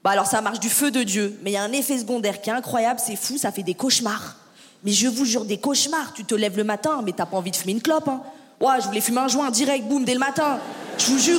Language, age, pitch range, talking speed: French, 20-39, 235-300 Hz, 310 wpm